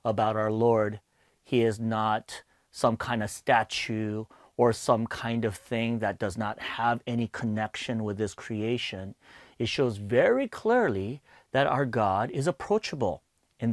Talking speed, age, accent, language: 150 wpm, 40-59, American, English